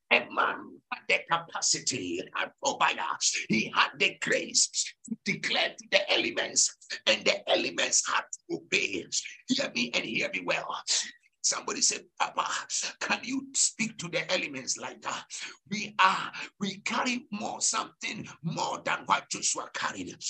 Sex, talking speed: male, 150 wpm